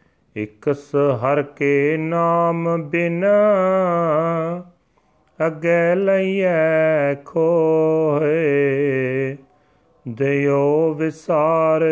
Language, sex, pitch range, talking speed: English, male, 140-165 Hz, 50 wpm